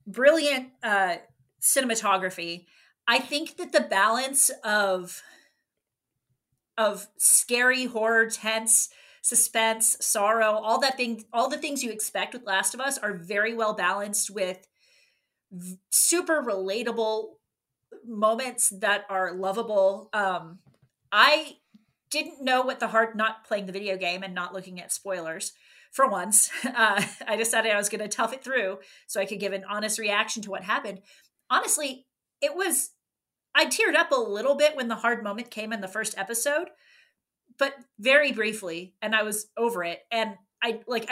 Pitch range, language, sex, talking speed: 195-255 Hz, English, female, 155 wpm